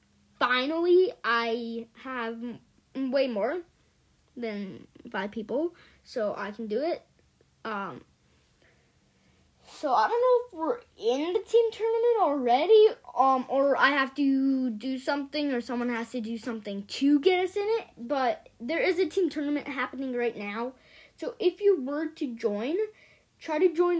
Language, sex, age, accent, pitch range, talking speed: English, female, 10-29, American, 235-340 Hz, 155 wpm